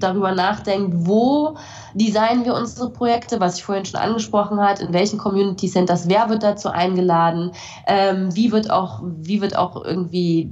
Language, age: German, 20-39